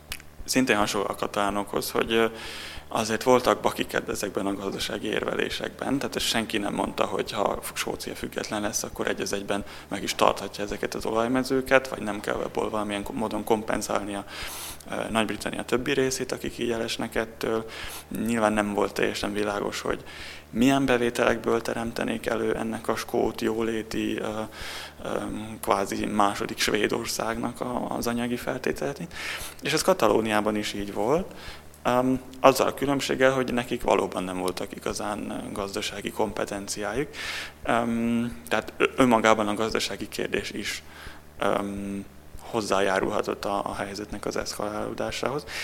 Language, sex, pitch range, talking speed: Hungarian, male, 100-115 Hz, 130 wpm